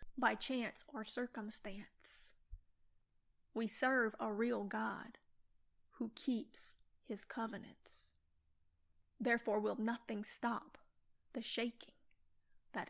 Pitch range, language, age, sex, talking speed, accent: 215-265 Hz, English, 20-39, female, 95 wpm, American